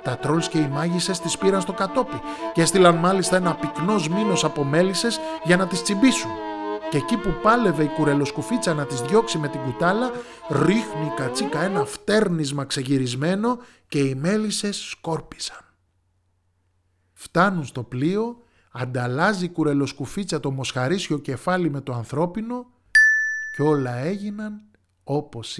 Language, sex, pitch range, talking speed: Greek, male, 115-180 Hz, 135 wpm